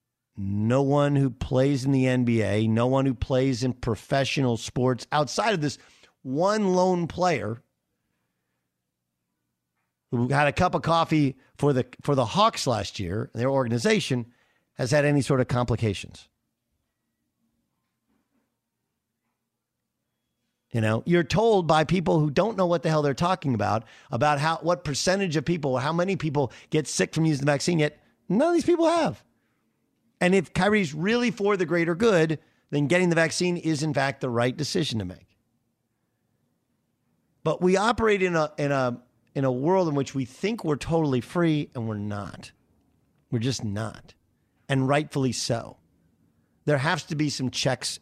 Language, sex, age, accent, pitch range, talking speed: English, male, 50-69, American, 120-165 Hz, 160 wpm